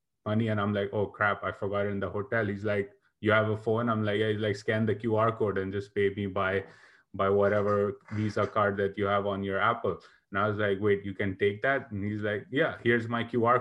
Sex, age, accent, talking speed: male, 30-49, Indian, 255 wpm